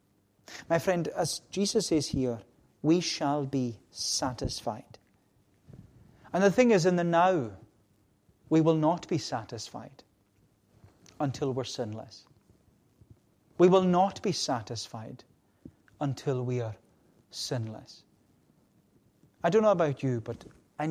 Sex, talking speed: male, 120 wpm